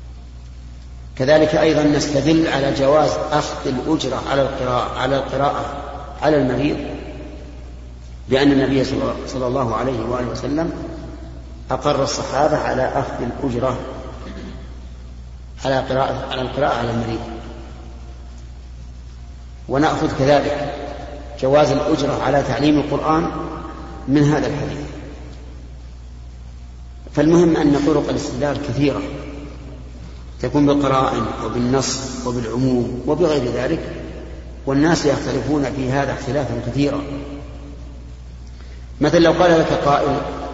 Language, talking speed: Arabic, 85 wpm